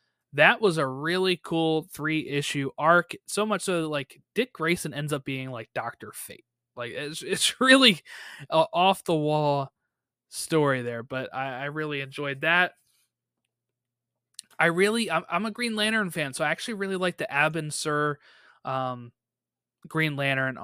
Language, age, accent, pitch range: English, 20-39, American, 130-180 Hz